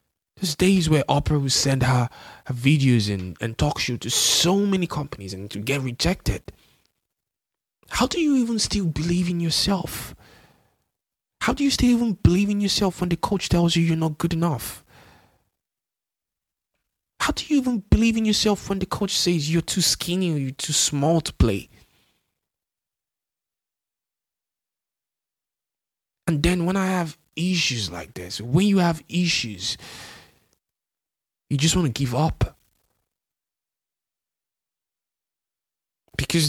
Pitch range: 125-175 Hz